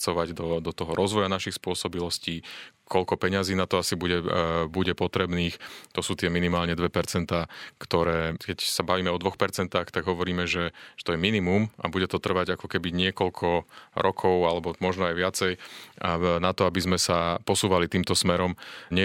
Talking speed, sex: 165 wpm, male